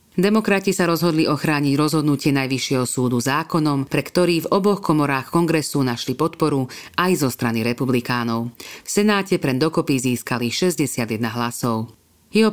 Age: 40-59